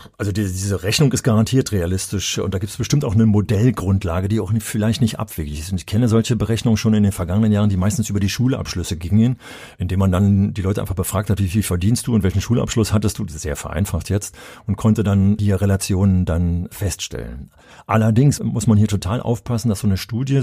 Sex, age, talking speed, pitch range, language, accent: male, 40-59, 225 wpm, 95-120 Hz, German, German